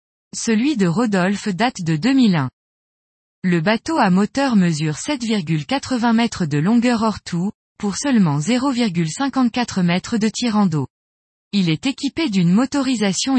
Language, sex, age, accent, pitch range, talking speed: French, female, 20-39, French, 175-245 Hz, 130 wpm